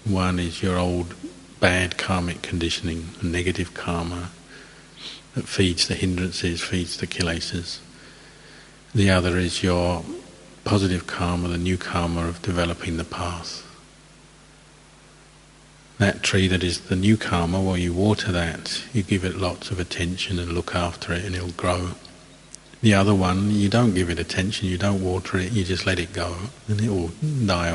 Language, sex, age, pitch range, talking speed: English, male, 50-69, 90-100 Hz, 160 wpm